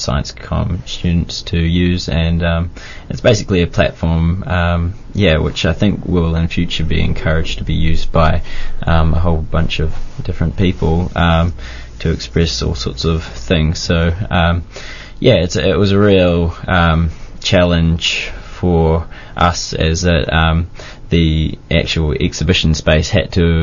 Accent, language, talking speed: Australian, English, 150 wpm